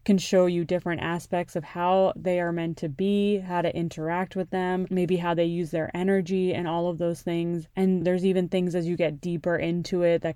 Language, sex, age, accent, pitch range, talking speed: English, female, 20-39, American, 170-190 Hz, 225 wpm